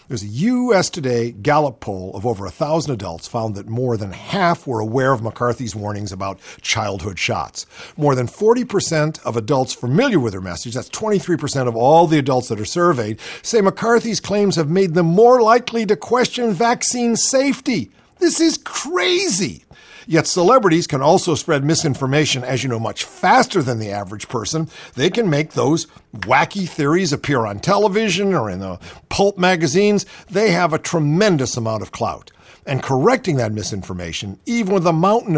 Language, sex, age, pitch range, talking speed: English, male, 50-69, 115-175 Hz, 170 wpm